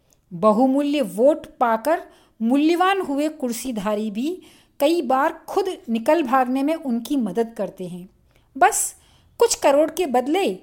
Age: 50-69